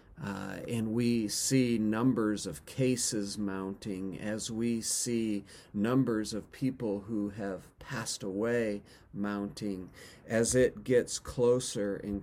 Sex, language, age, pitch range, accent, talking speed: male, English, 40-59, 105-135 Hz, American, 120 wpm